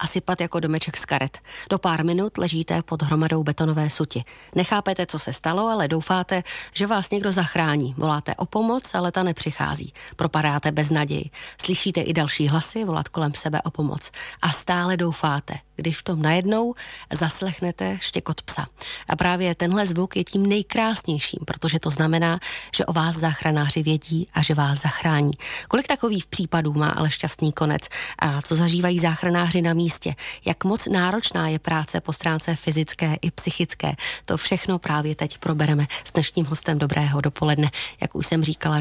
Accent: native